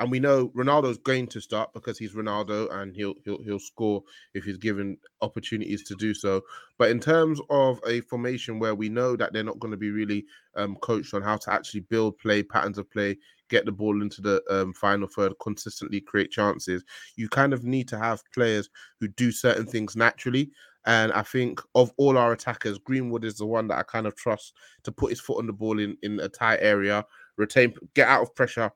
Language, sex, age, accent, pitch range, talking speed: English, male, 20-39, British, 105-125 Hz, 220 wpm